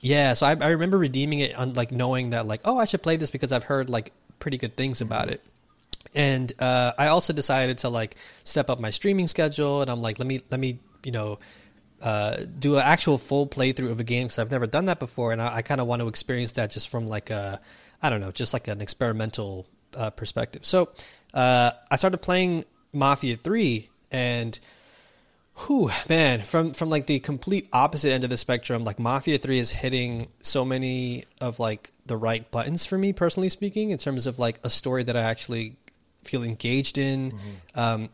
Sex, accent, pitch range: male, American, 115-140 Hz